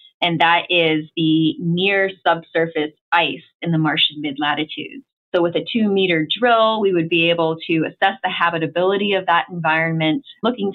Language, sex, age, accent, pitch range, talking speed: English, female, 20-39, American, 165-195 Hz, 155 wpm